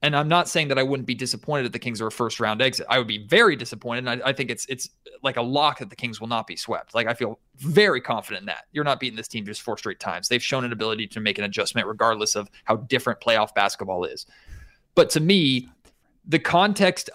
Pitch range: 120-160 Hz